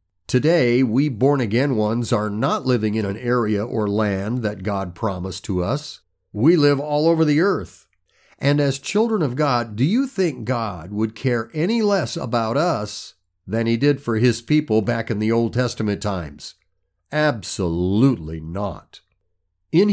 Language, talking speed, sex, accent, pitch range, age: English, 160 wpm, male, American, 105-150 Hz, 50-69